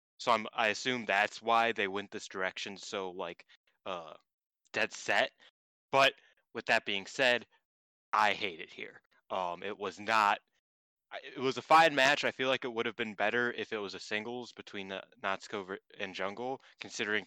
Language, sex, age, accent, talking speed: English, male, 20-39, American, 175 wpm